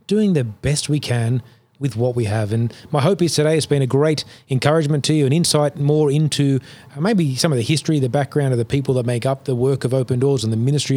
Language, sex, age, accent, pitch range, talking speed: English, male, 30-49, Australian, 125-150 Hz, 250 wpm